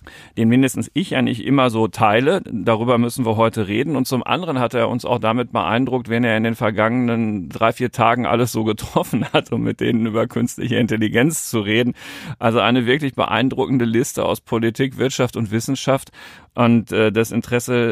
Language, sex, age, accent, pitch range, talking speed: German, male, 40-59, German, 110-130 Hz, 190 wpm